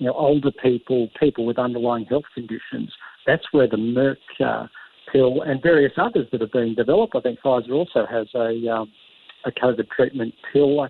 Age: 60-79